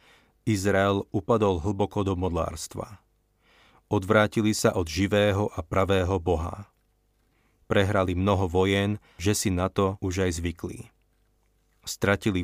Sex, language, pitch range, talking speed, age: male, Slovak, 95-110 Hz, 110 wpm, 30-49